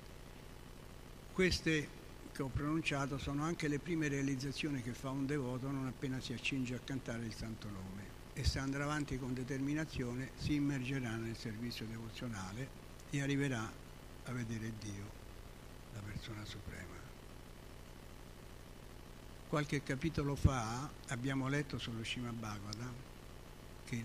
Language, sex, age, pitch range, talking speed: Italian, male, 60-79, 115-140 Hz, 125 wpm